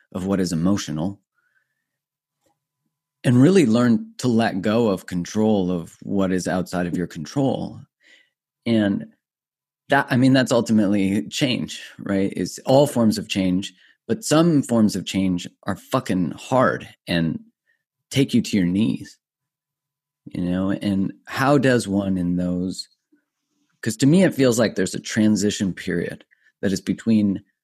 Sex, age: male, 30-49